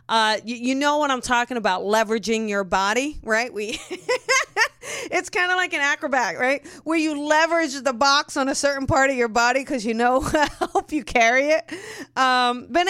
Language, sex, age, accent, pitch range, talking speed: English, female, 30-49, American, 195-255 Hz, 195 wpm